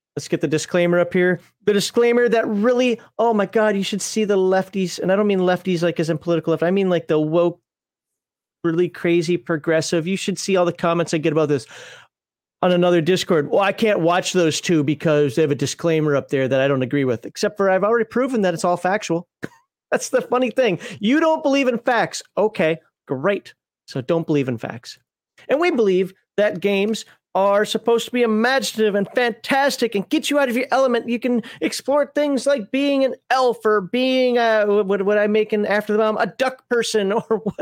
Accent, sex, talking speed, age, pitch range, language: American, male, 210 wpm, 40-59, 175-240 Hz, English